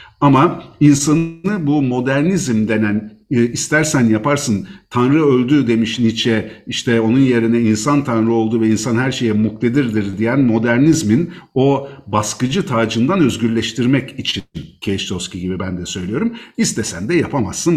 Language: Turkish